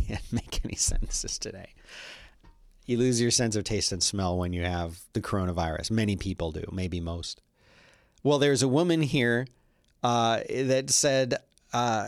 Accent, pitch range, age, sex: American, 105-135 Hz, 40-59, male